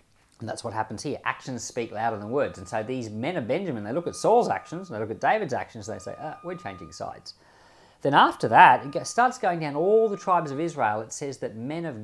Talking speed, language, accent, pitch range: 255 wpm, English, Australian, 110-170 Hz